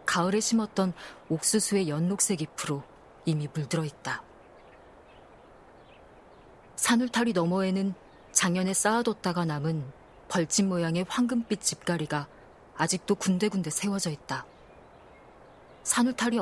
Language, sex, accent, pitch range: Korean, female, native, 160-200 Hz